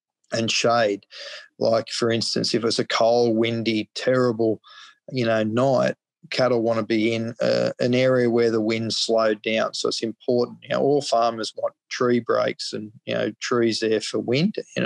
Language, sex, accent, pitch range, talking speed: English, male, Australian, 115-135 Hz, 180 wpm